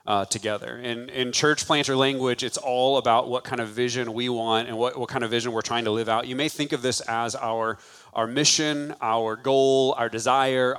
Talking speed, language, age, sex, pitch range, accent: 225 wpm, English, 30-49, male, 120-145 Hz, American